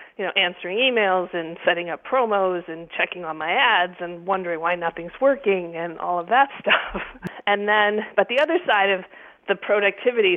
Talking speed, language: 185 wpm, English